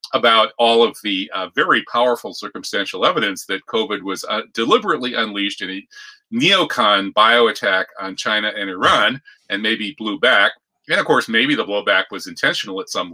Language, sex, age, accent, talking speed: English, male, 30-49, American, 170 wpm